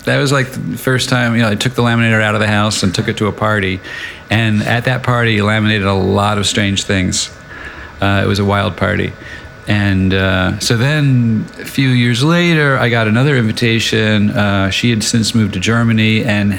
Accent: American